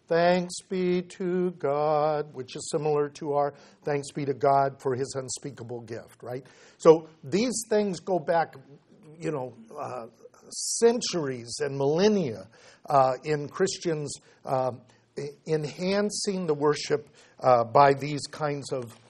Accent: American